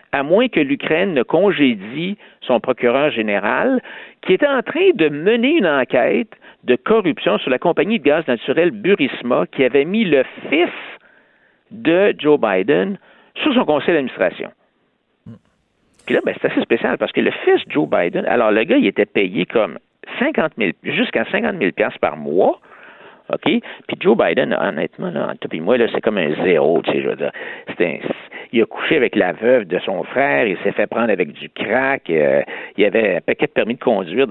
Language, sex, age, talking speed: French, male, 60-79, 185 wpm